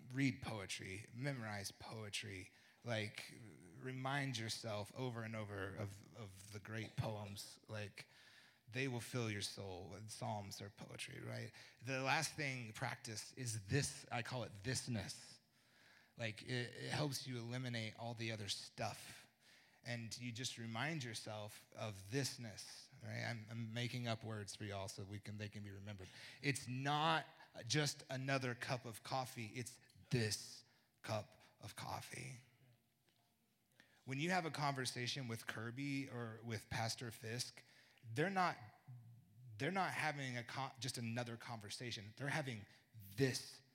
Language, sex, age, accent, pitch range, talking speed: English, male, 30-49, American, 110-130 Hz, 135 wpm